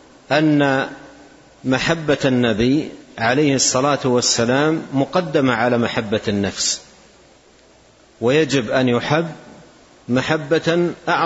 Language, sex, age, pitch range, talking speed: Arabic, male, 50-69, 120-150 Hz, 75 wpm